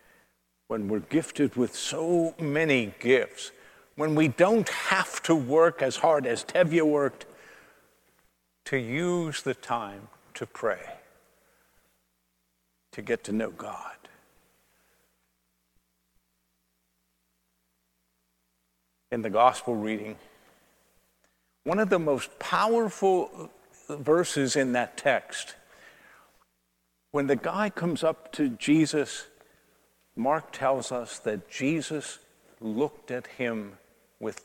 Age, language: 60-79, English